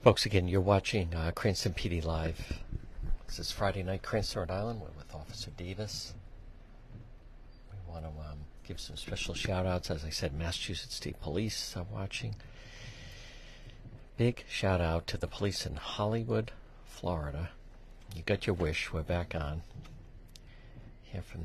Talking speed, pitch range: 145 wpm, 85-115 Hz